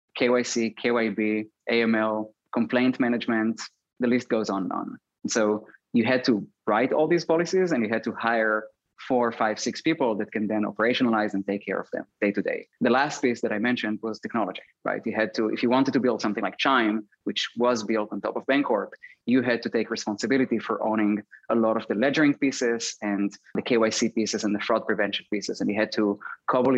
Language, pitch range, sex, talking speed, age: English, 105-130 Hz, male, 215 wpm, 20-39